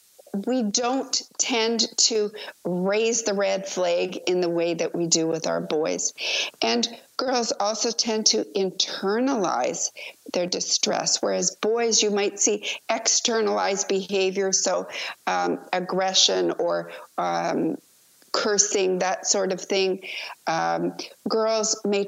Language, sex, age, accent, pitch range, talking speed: English, female, 50-69, American, 185-220 Hz, 120 wpm